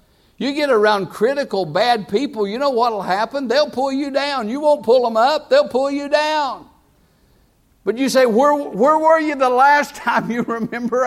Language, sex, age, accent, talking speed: English, male, 60-79, American, 195 wpm